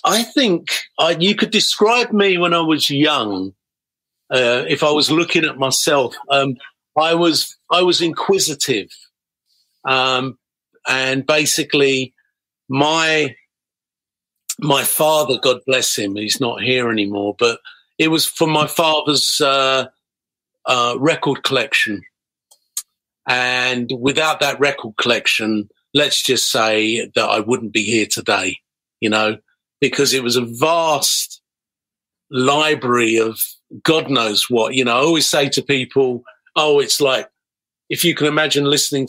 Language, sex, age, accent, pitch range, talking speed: English, male, 50-69, British, 125-155 Hz, 135 wpm